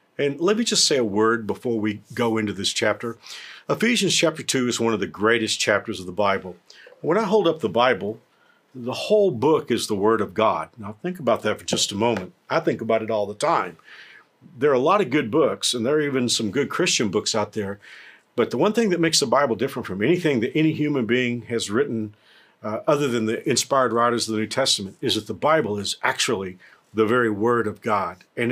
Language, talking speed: English, 230 wpm